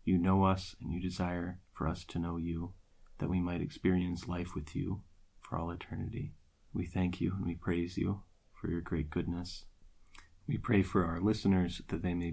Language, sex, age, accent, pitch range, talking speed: English, male, 30-49, American, 85-95 Hz, 195 wpm